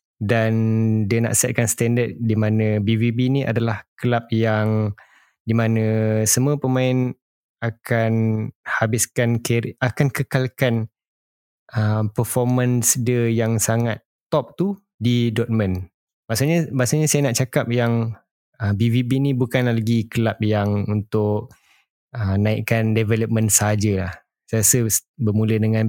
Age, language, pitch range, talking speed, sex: 20-39, Malay, 110-120 Hz, 120 wpm, male